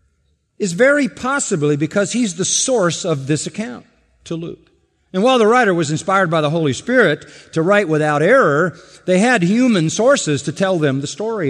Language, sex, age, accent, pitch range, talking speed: English, male, 50-69, American, 115-160 Hz, 185 wpm